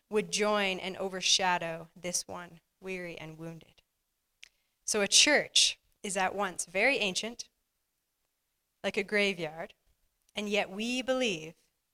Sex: female